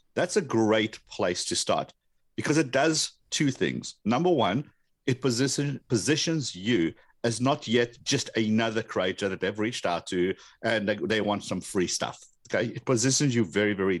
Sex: male